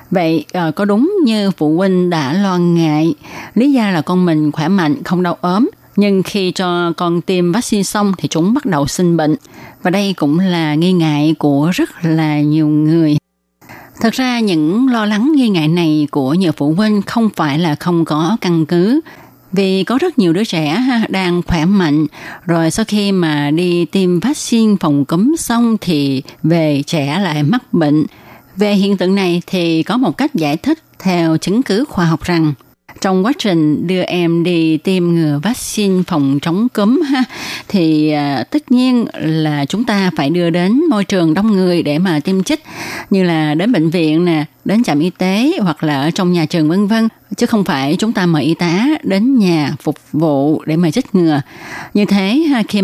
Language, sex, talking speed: Vietnamese, female, 195 wpm